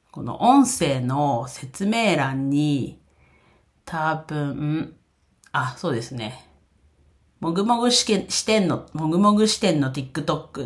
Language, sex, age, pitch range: Japanese, female, 40-59, 125-165 Hz